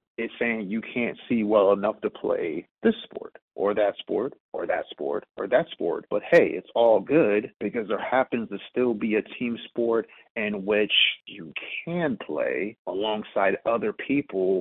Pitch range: 110-145 Hz